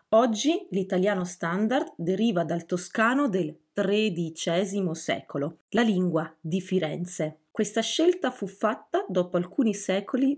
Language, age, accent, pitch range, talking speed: Italian, 30-49, native, 170-235 Hz, 115 wpm